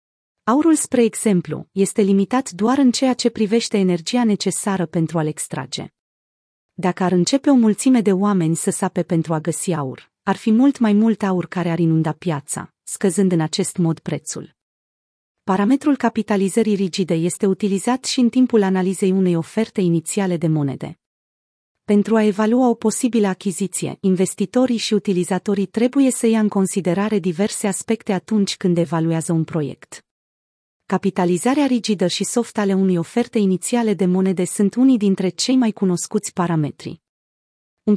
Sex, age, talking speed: female, 30-49, 150 wpm